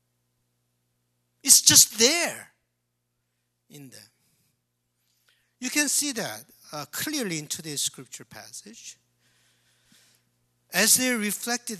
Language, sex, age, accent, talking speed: English, male, 50-69, Japanese, 90 wpm